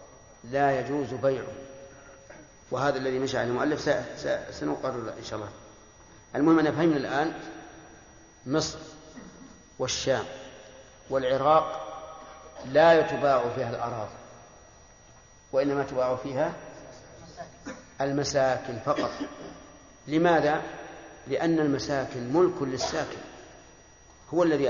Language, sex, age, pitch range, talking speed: Arabic, male, 50-69, 130-155 Hz, 85 wpm